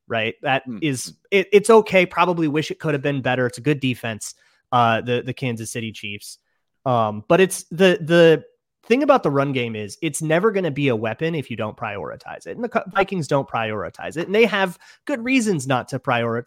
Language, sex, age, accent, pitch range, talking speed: English, male, 30-49, American, 120-170 Hz, 215 wpm